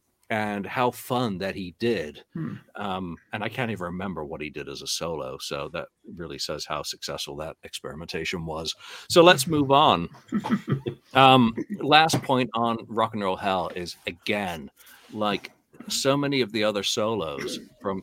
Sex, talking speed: male, 165 wpm